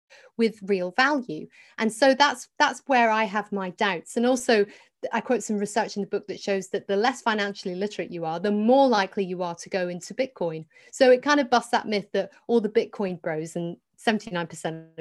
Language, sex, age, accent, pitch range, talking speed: English, female, 40-59, British, 195-260 Hz, 210 wpm